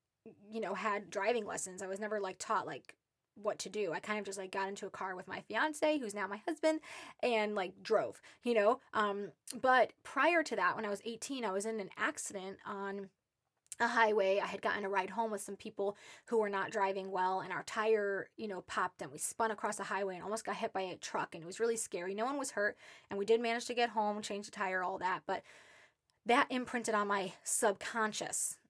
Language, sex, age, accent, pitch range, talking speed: English, female, 20-39, American, 195-225 Hz, 235 wpm